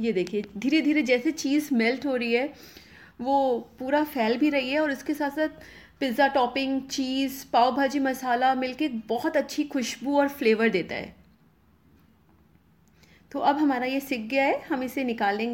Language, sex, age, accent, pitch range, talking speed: Hindi, female, 30-49, native, 235-295 Hz, 170 wpm